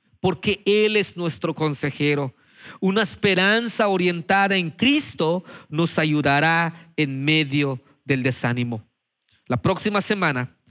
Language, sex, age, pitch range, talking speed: Spanish, male, 40-59, 125-175 Hz, 105 wpm